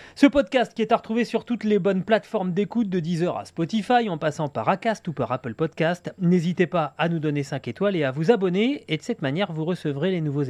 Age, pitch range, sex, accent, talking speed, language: 30-49, 155-215 Hz, male, French, 245 wpm, French